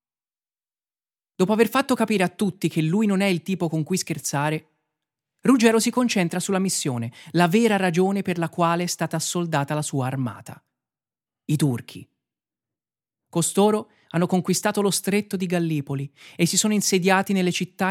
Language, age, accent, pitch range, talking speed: Italian, 30-49, native, 140-185 Hz, 160 wpm